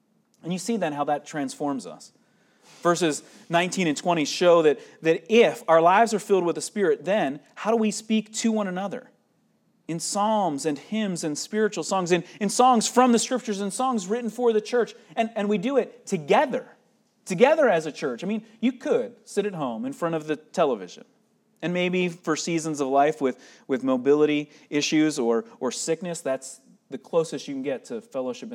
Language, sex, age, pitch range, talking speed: English, male, 30-49, 160-225 Hz, 195 wpm